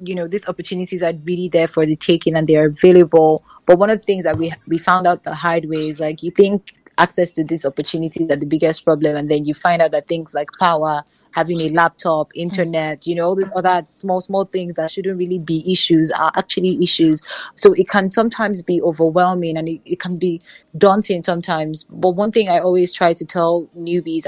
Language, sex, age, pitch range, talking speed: English, female, 20-39, 155-180 Hz, 220 wpm